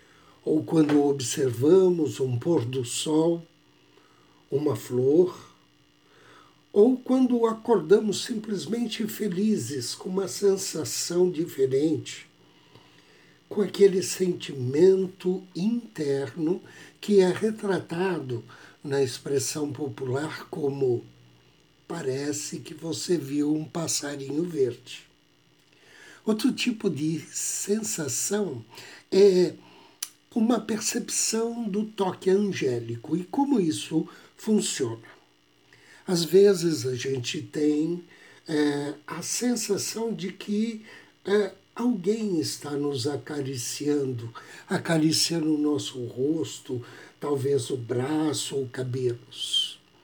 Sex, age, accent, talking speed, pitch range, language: male, 60-79, Brazilian, 85 wpm, 140-195 Hz, Portuguese